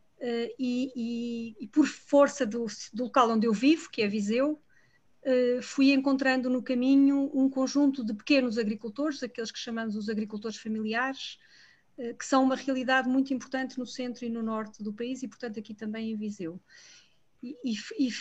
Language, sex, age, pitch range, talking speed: Portuguese, female, 40-59, 225-265 Hz, 170 wpm